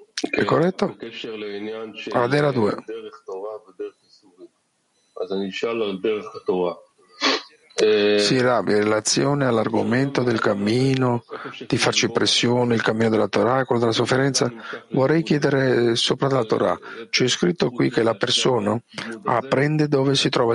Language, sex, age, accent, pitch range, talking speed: Italian, male, 50-69, native, 115-160 Hz, 110 wpm